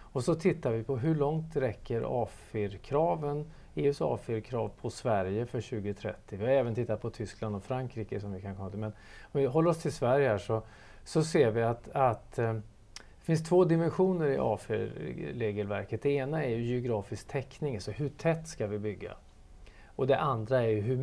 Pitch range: 110-145 Hz